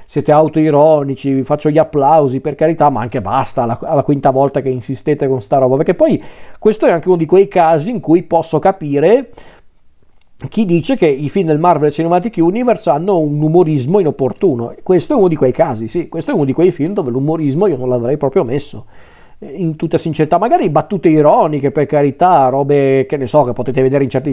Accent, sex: native, male